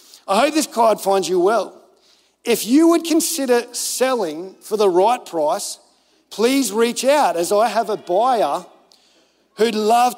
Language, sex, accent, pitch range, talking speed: English, male, Australian, 210-290 Hz, 155 wpm